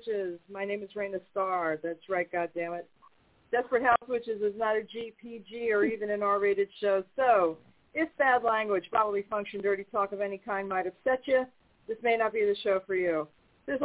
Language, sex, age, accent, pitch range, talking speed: English, female, 50-69, American, 185-240 Hz, 190 wpm